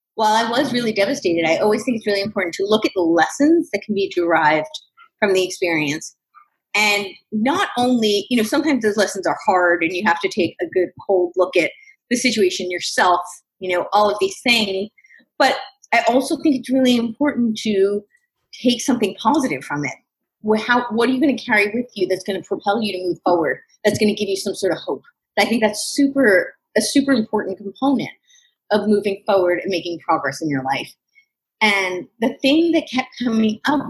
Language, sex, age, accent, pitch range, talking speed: English, female, 30-49, American, 185-250 Hz, 200 wpm